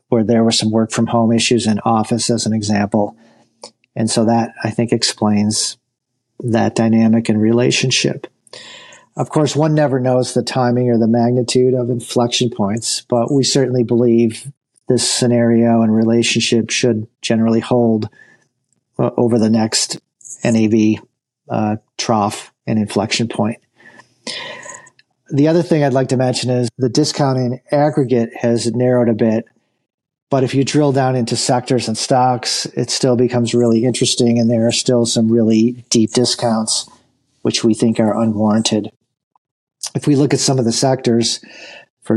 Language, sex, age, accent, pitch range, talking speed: English, male, 50-69, American, 115-125 Hz, 150 wpm